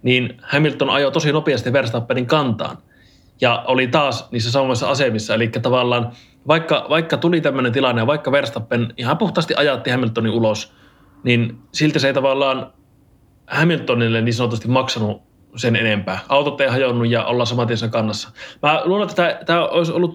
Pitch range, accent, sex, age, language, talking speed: 115-145 Hz, native, male, 20-39, Finnish, 150 wpm